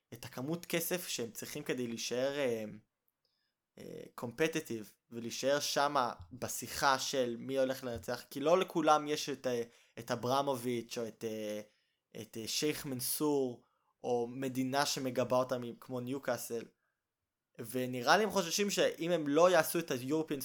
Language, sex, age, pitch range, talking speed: Hebrew, male, 20-39, 120-150 Hz, 135 wpm